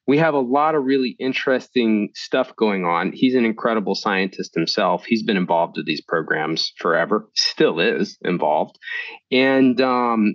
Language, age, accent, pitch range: English, 30-49, American, 115-145 Hz